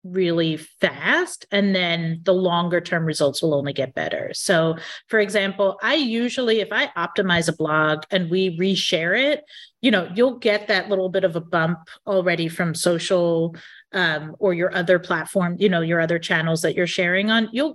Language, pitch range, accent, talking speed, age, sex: English, 175-230 Hz, American, 185 wpm, 30-49, female